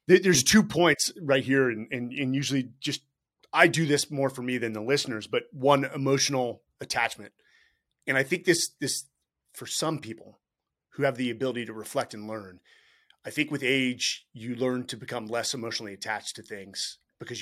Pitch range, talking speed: 115-145 Hz, 190 wpm